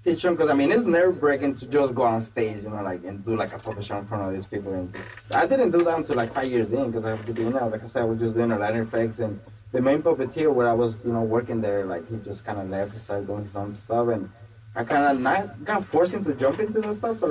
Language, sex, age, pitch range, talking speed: English, male, 20-39, 110-130 Hz, 300 wpm